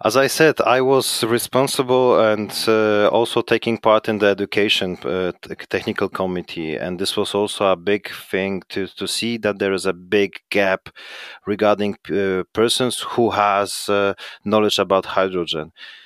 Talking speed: 155 wpm